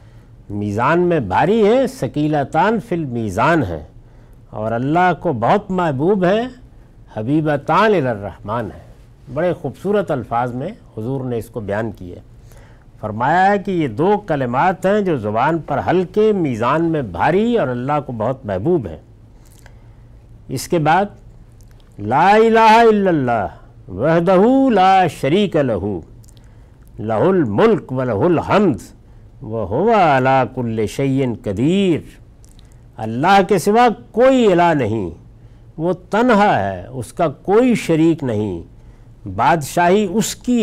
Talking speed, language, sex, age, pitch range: 125 wpm, Urdu, male, 60-79, 115-180 Hz